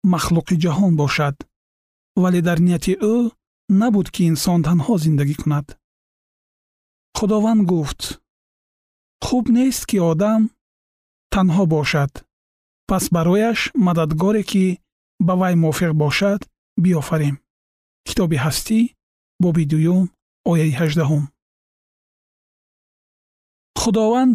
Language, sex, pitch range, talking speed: Persian, male, 160-215 Hz, 90 wpm